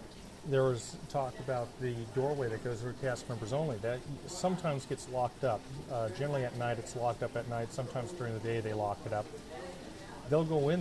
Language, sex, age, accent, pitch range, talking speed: English, male, 40-59, American, 115-140 Hz, 205 wpm